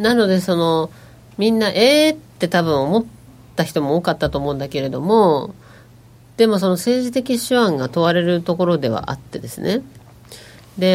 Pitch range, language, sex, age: 140-220 Hz, Japanese, female, 40-59